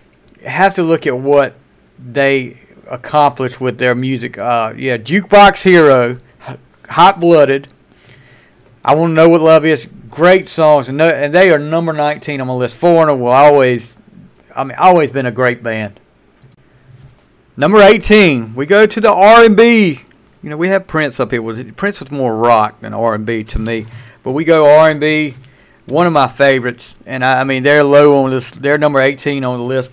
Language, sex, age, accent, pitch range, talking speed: English, male, 50-69, American, 130-160 Hz, 190 wpm